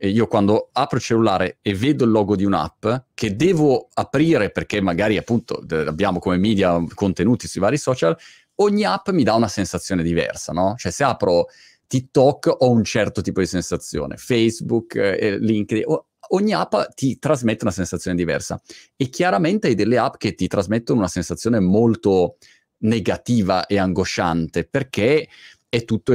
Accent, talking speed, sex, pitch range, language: native, 160 wpm, male, 90-120 Hz, Italian